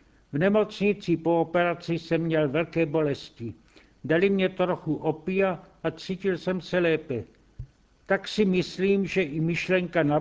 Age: 70-89